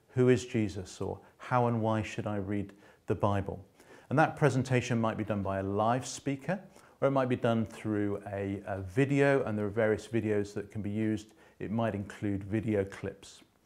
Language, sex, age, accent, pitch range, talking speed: English, male, 40-59, British, 105-130 Hz, 200 wpm